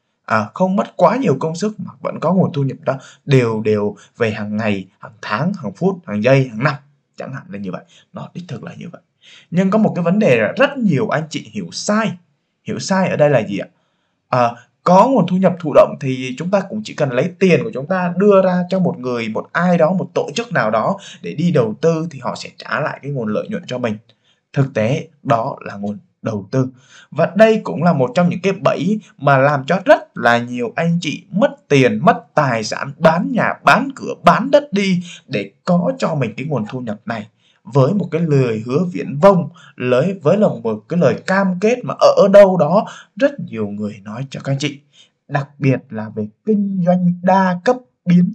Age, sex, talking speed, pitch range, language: 20-39, male, 230 wpm, 130-195 Hz, Vietnamese